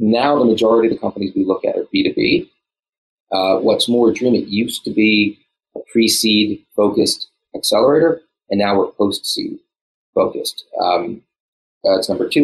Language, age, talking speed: English, 30-49, 175 wpm